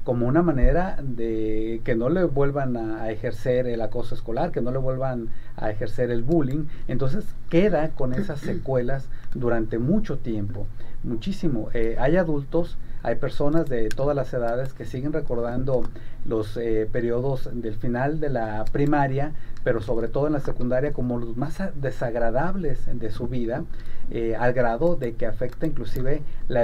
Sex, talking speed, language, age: male, 160 wpm, Spanish, 40-59